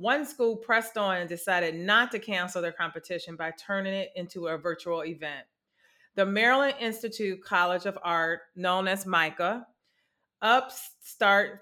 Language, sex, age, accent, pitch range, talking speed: English, female, 40-59, American, 175-210 Hz, 145 wpm